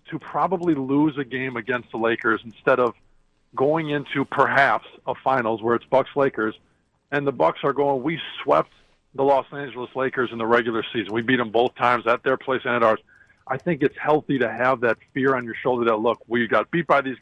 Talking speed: 220 wpm